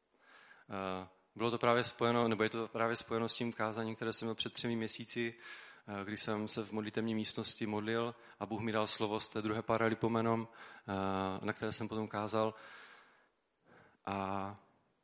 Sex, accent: male, native